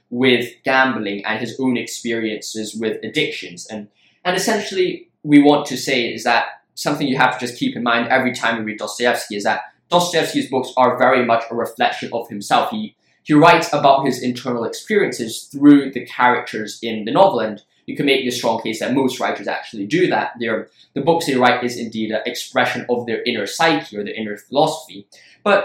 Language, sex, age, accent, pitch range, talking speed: English, male, 10-29, British, 120-155 Hz, 200 wpm